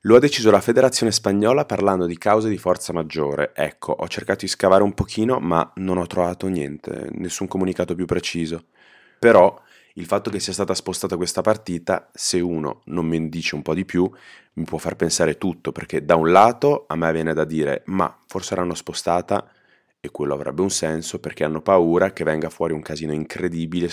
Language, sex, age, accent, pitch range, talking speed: Italian, male, 20-39, native, 80-95 Hz, 195 wpm